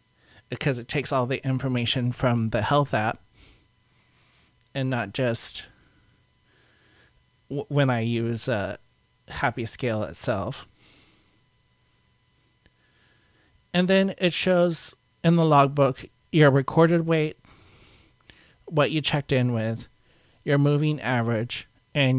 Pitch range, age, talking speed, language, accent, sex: 115-145 Hz, 40-59, 110 wpm, English, American, male